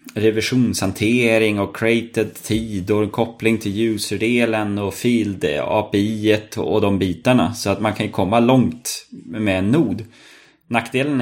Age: 20-39